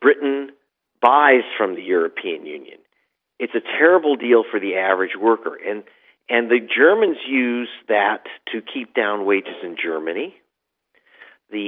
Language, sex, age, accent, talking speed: English, male, 50-69, American, 140 wpm